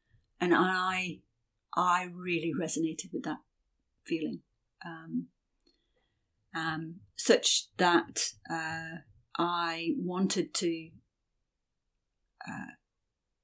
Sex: female